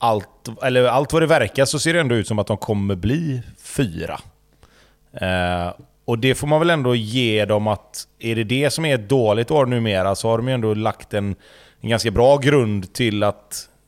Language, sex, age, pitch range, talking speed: Swedish, male, 30-49, 105-135 Hz, 210 wpm